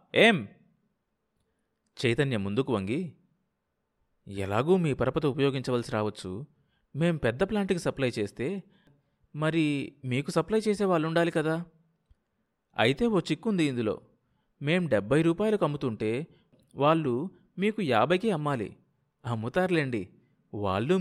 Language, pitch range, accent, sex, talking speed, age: Telugu, 110-160 Hz, native, male, 95 wpm, 30-49